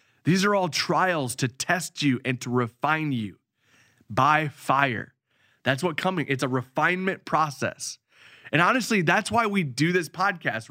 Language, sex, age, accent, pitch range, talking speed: English, male, 20-39, American, 125-170 Hz, 155 wpm